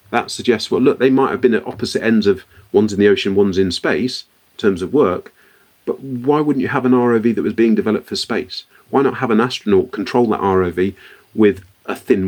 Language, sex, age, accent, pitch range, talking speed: English, male, 40-59, British, 105-130 Hz, 230 wpm